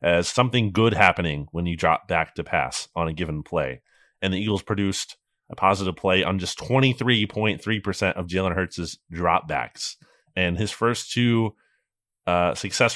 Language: English